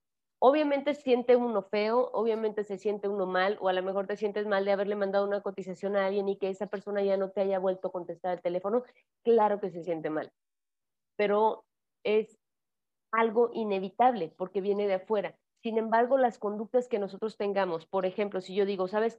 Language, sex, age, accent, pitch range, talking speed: Spanish, female, 30-49, Mexican, 190-220 Hz, 195 wpm